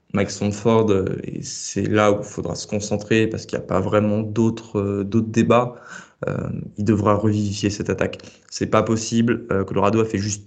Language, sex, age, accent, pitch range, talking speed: French, male, 20-39, French, 105-120 Hz, 185 wpm